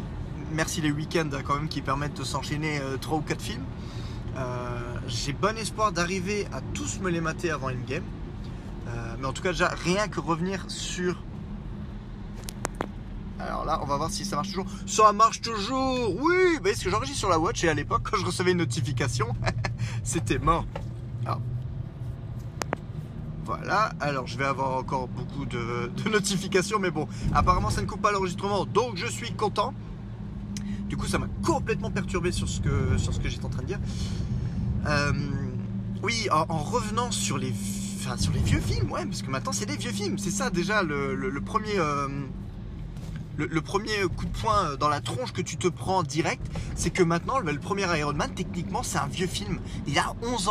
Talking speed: 195 wpm